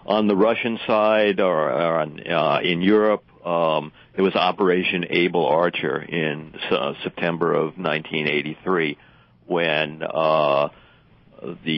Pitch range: 80-105 Hz